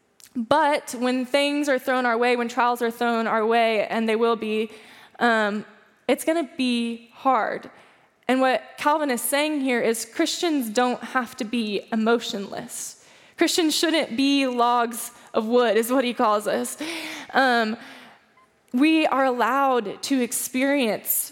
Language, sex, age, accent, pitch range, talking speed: English, female, 10-29, American, 230-265 Hz, 150 wpm